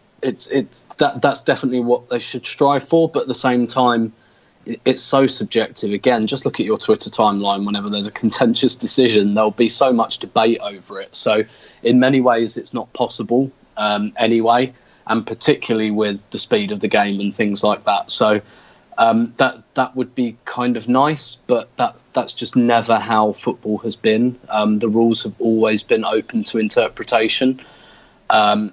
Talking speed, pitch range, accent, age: 180 wpm, 110-130 Hz, British, 20-39